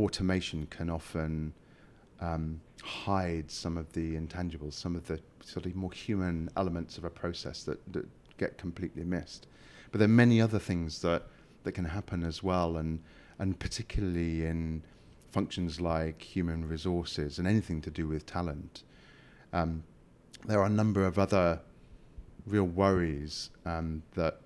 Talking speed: 150 wpm